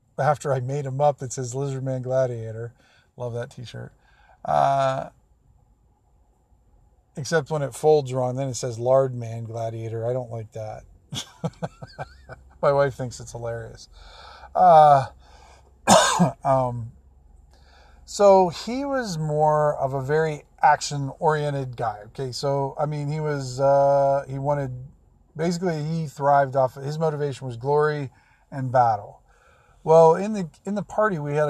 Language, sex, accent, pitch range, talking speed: English, male, American, 115-145 Hz, 135 wpm